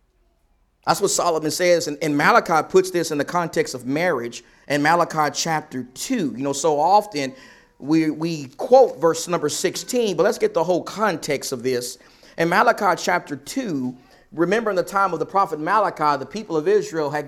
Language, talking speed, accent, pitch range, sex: English, 185 wpm, American, 155-210 Hz, male